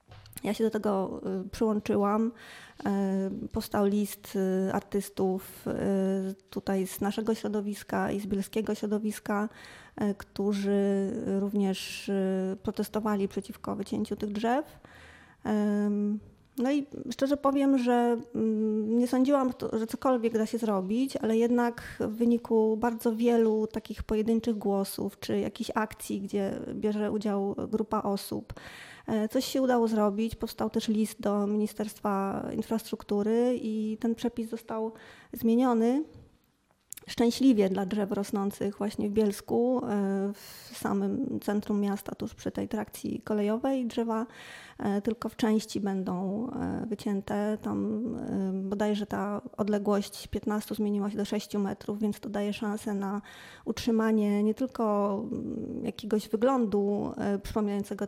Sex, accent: female, native